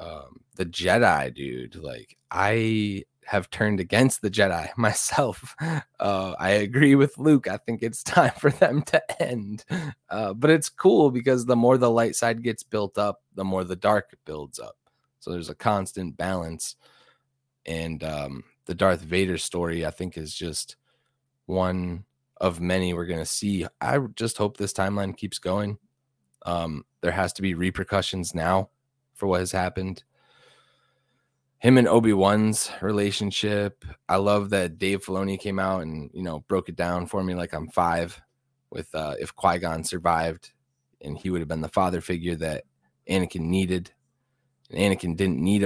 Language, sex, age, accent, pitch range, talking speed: English, male, 20-39, American, 90-115 Hz, 165 wpm